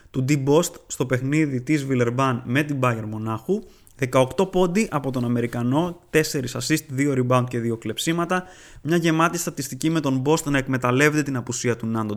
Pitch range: 125-165 Hz